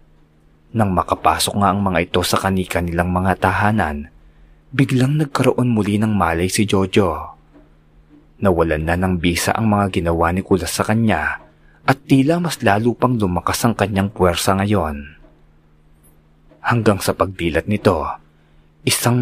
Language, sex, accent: Filipino, male, native